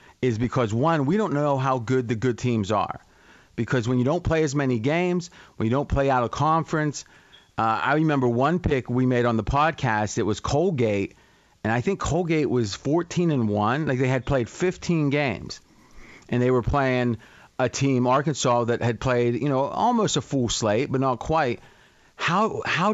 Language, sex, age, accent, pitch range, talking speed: English, male, 40-59, American, 115-145 Hz, 195 wpm